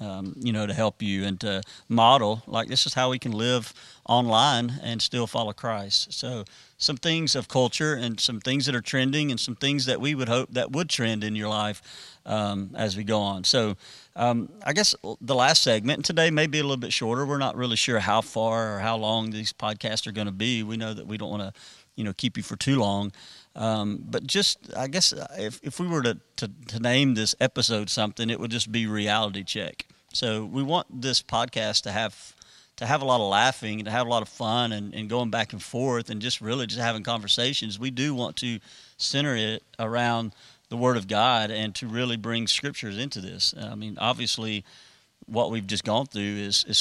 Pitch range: 105-125 Hz